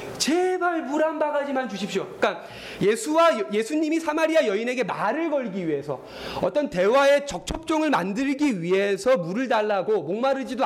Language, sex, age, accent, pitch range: Korean, male, 30-49, native, 190-265 Hz